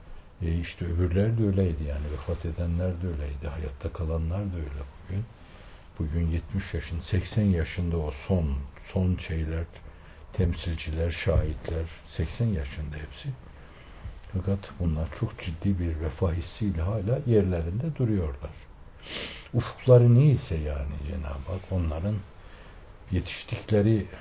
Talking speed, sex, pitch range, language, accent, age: 115 wpm, male, 80-100 Hz, Turkish, native, 60-79